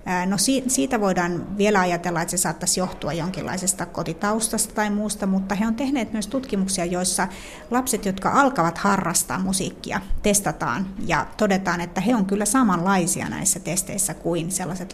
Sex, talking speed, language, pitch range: female, 150 wpm, Finnish, 180-210 Hz